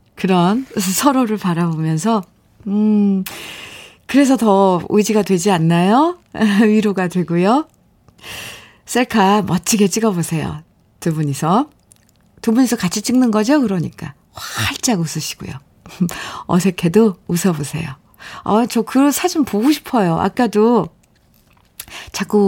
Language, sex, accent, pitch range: Korean, female, native, 170-230 Hz